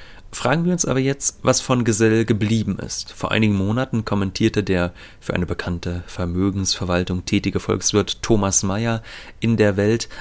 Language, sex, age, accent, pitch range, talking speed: German, male, 30-49, German, 95-115 Hz, 155 wpm